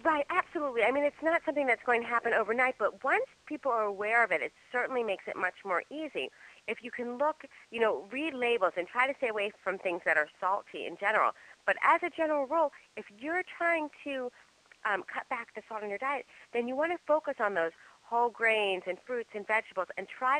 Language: English